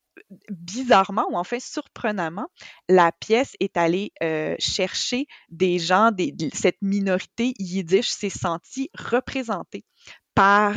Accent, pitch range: Canadian, 180-220 Hz